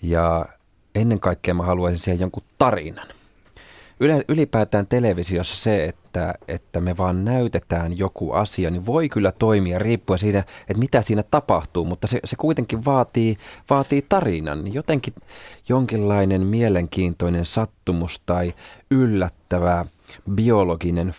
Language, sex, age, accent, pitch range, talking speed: Finnish, male, 30-49, native, 90-115 Hz, 115 wpm